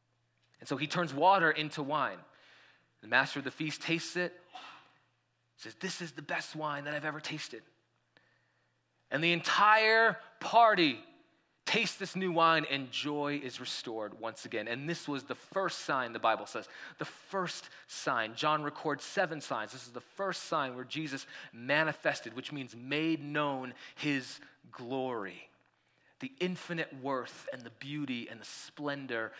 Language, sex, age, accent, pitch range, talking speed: English, male, 30-49, American, 125-160 Hz, 155 wpm